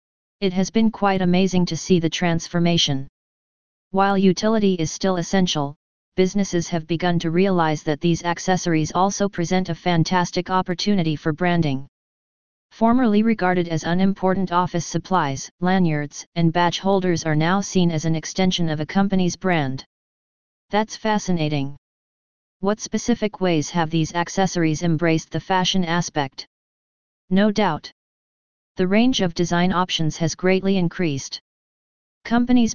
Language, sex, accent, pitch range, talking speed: English, female, American, 160-190 Hz, 130 wpm